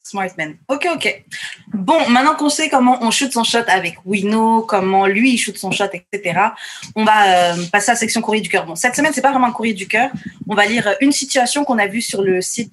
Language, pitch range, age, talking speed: French, 185-245 Hz, 20-39, 255 wpm